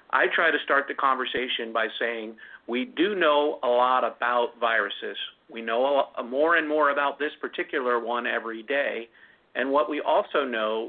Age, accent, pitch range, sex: 50-69, American, 120-150 Hz, male